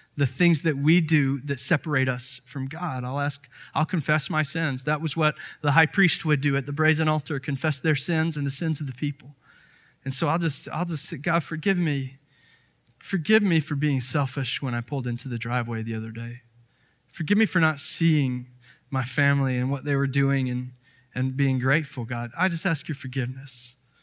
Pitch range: 130-155 Hz